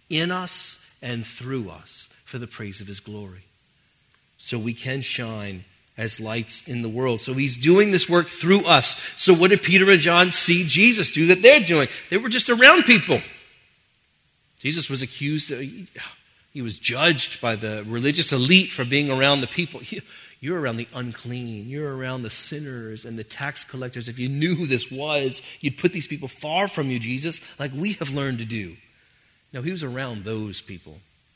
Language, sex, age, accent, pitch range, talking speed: English, male, 30-49, American, 125-180 Hz, 185 wpm